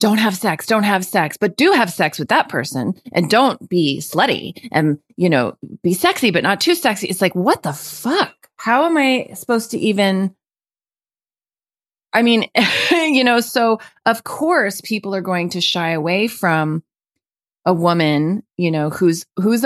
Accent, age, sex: American, 30-49, female